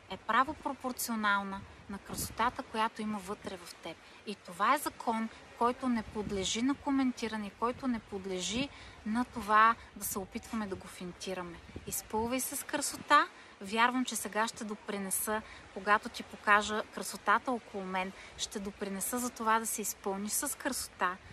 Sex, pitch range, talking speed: female, 200-245 Hz, 150 wpm